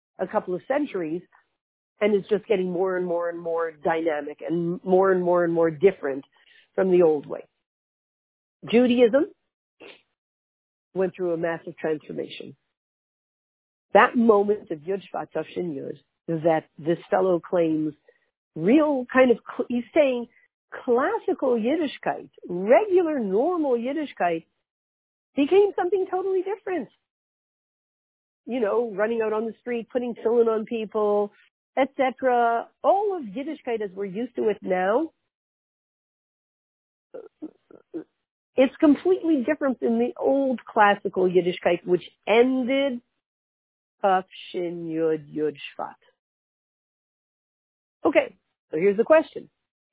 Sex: female